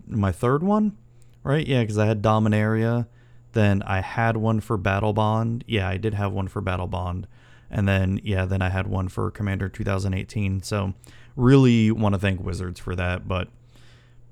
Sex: male